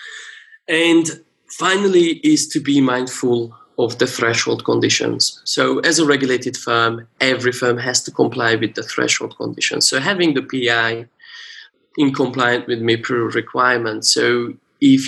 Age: 20-39